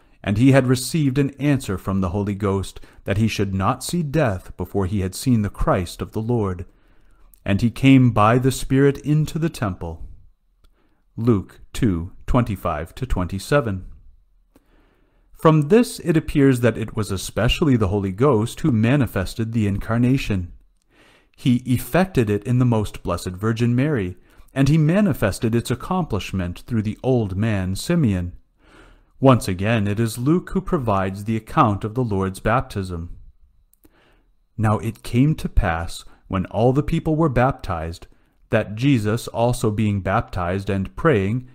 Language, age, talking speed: English, 40-59, 150 wpm